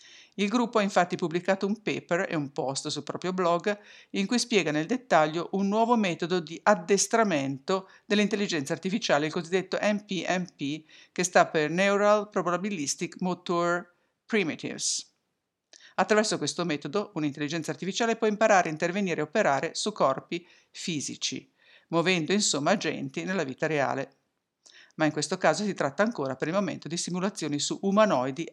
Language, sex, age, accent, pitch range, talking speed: English, female, 50-69, Italian, 155-195 Hz, 145 wpm